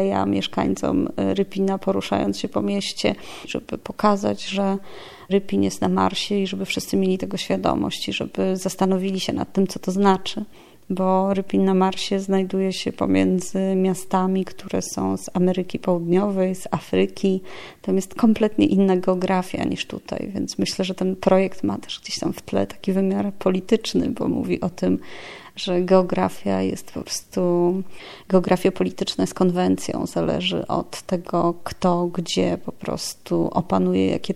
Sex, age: female, 30-49